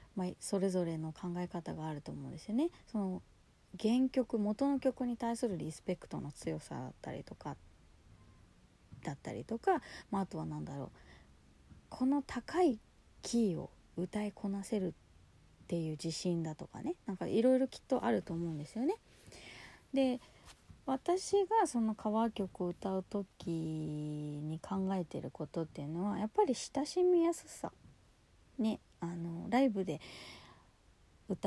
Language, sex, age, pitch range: Japanese, female, 30-49, 155-230 Hz